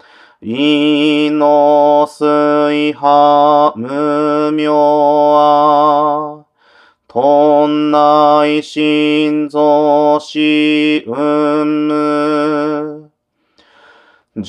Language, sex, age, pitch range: Japanese, male, 40-59, 150-155 Hz